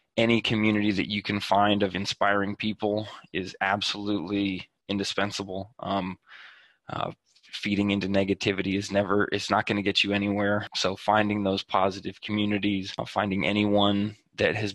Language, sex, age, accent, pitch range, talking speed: English, male, 20-39, American, 100-105 Hz, 140 wpm